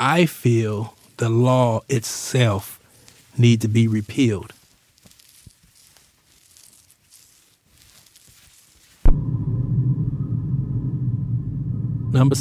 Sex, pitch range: male, 115-140 Hz